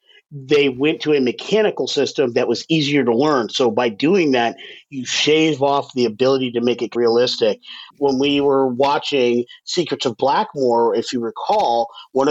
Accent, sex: American, male